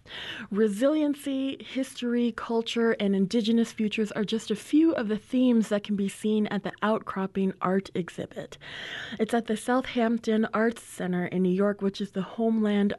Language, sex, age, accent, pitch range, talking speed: English, female, 20-39, American, 200-245 Hz, 160 wpm